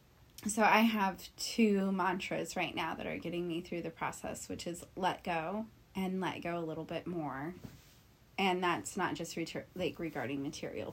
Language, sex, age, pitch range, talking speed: English, female, 20-39, 160-190 Hz, 175 wpm